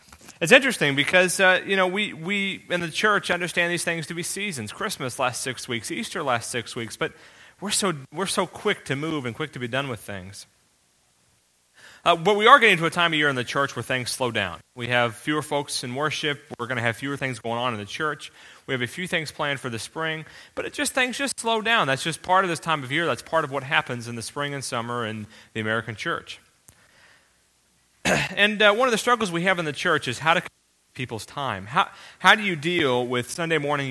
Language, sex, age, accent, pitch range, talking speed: English, male, 30-49, American, 125-170 Hz, 240 wpm